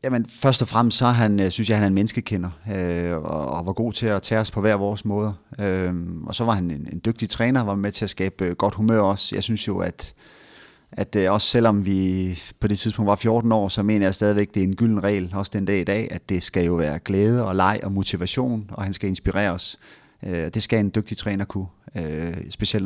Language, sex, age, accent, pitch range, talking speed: Danish, male, 30-49, native, 95-115 Hz, 235 wpm